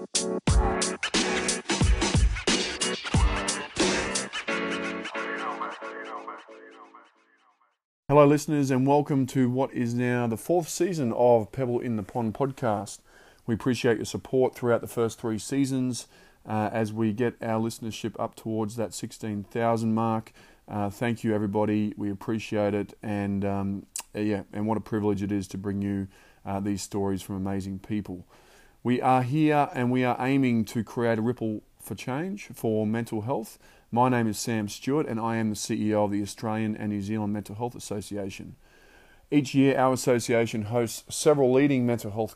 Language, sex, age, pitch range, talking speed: English, male, 20-39, 105-125 Hz, 150 wpm